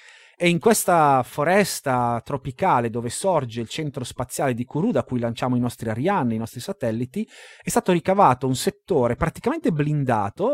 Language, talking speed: Italian, 160 wpm